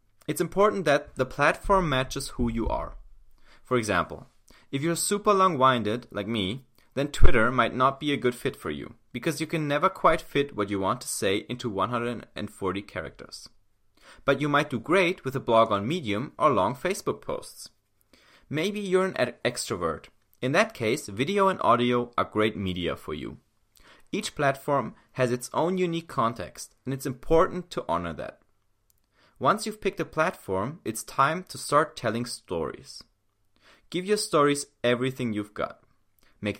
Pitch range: 110-165 Hz